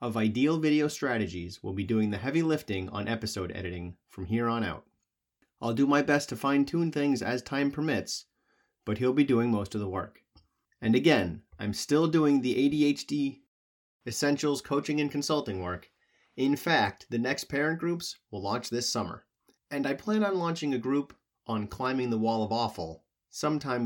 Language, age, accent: English, 30-49, American